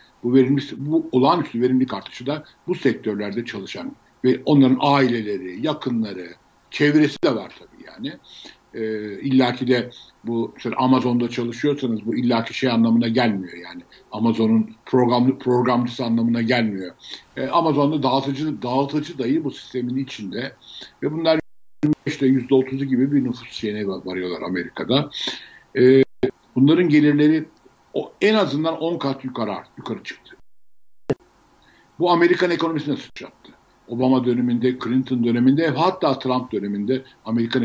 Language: Turkish